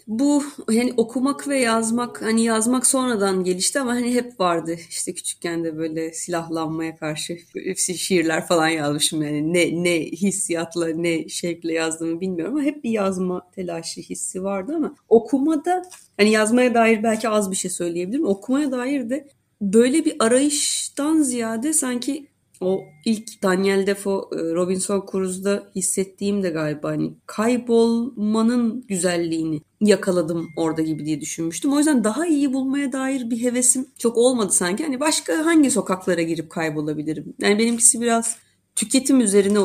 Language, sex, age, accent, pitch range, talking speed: Turkish, female, 30-49, native, 175-245 Hz, 145 wpm